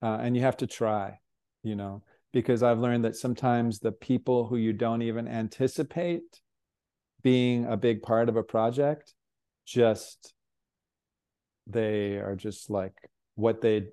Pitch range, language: 105-120 Hz, English